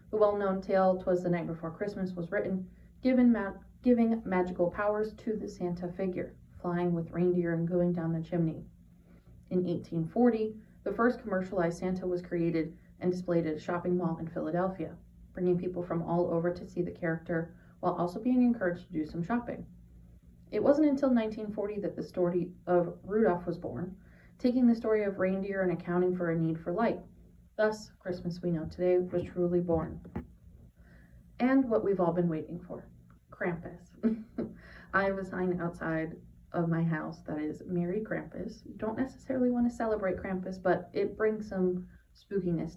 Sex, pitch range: female, 170-205 Hz